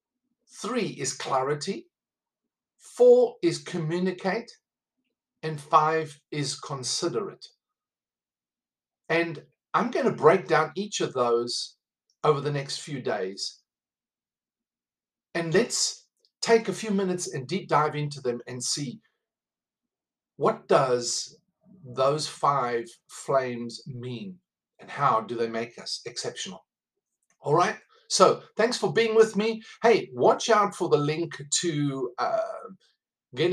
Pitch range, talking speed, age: 130-185 Hz, 120 wpm, 50-69